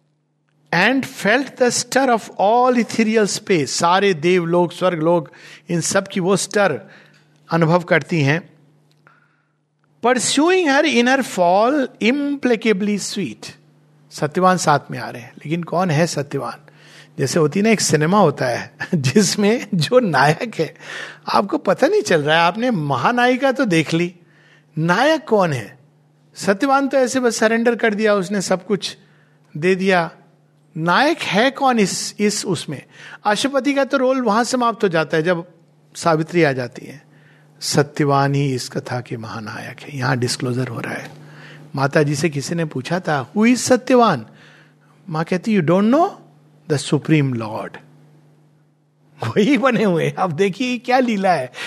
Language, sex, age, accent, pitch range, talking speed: Hindi, male, 60-79, native, 150-210 Hz, 145 wpm